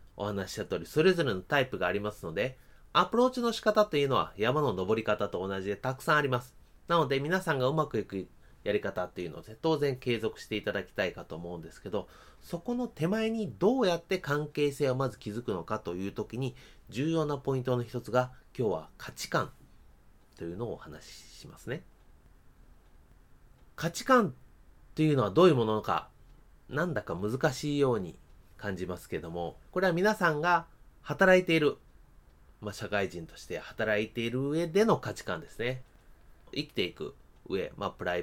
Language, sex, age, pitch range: Japanese, male, 30-49, 100-170 Hz